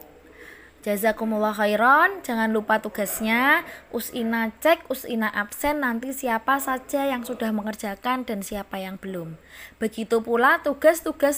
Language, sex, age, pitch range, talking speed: Indonesian, female, 20-39, 205-270 Hz, 115 wpm